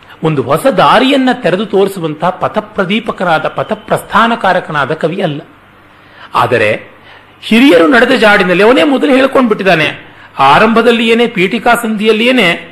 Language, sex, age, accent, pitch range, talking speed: Kannada, male, 40-59, native, 165-230 Hz, 95 wpm